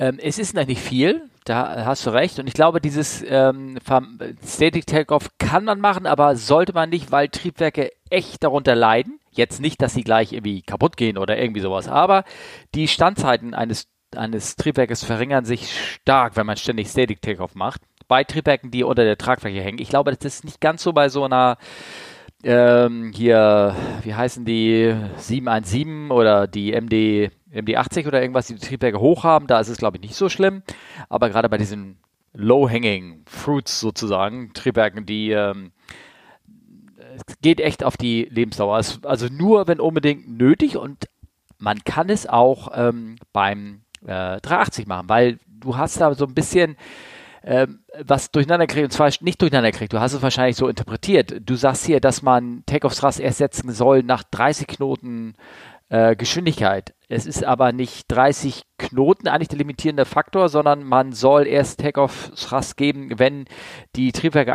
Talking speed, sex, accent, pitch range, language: 170 wpm, male, German, 115-145 Hz, German